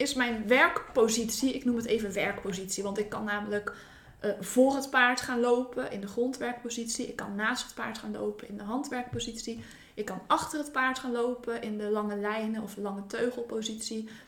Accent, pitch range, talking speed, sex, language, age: Dutch, 215-250 Hz, 195 wpm, female, Dutch, 20-39